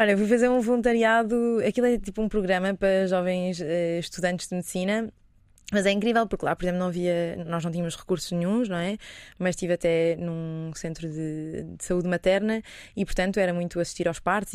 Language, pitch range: Portuguese, 175-205 Hz